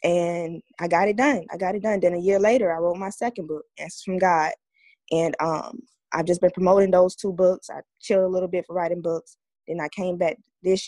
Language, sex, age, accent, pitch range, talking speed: English, female, 20-39, American, 170-210 Hz, 235 wpm